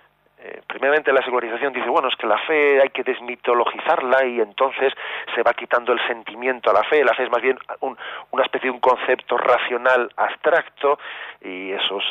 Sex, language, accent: male, Spanish, Spanish